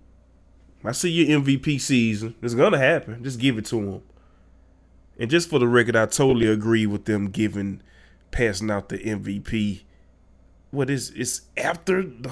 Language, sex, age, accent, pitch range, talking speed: English, male, 20-39, American, 75-125 Hz, 160 wpm